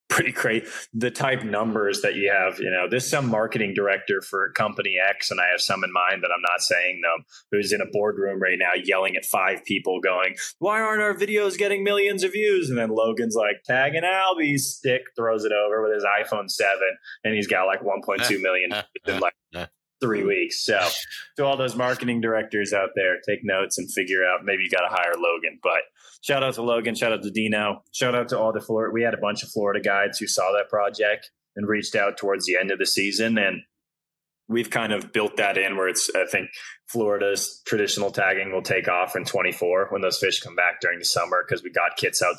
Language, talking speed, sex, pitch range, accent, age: English, 220 wpm, male, 100-130 Hz, American, 20-39